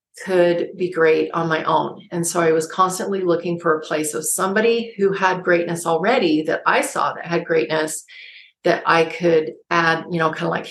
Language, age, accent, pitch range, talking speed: English, 40-59, American, 165-195 Hz, 200 wpm